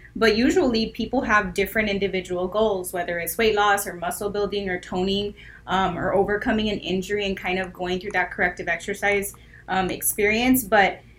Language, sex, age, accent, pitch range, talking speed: English, female, 20-39, American, 195-230 Hz, 170 wpm